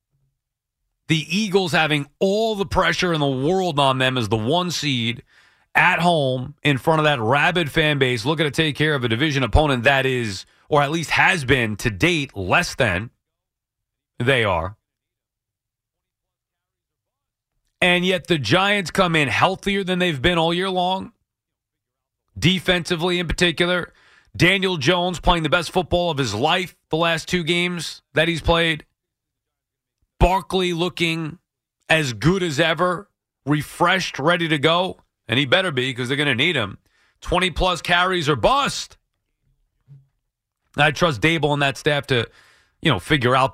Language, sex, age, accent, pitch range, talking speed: English, male, 30-49, American, 125-175 Hz, 155 wpm